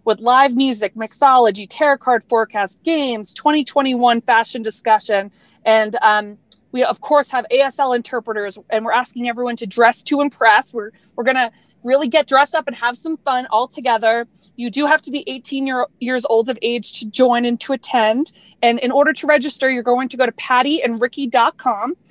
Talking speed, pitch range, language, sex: 180 wpm, 230-280 Hz, English, female